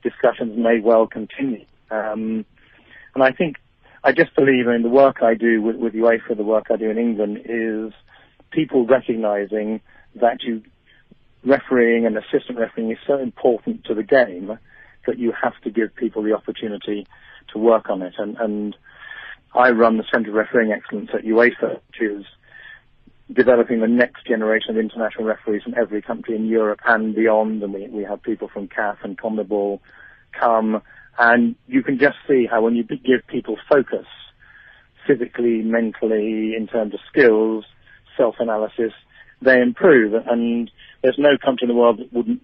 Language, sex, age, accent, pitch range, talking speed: English, male, 40-59, British, 110-120 Hz, 165 wpm